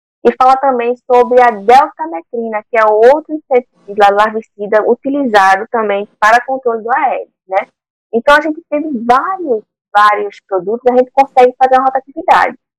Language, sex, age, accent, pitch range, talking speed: Portuguese, female, 10-29, Brazilian, 210-265 Hz, 145 wpm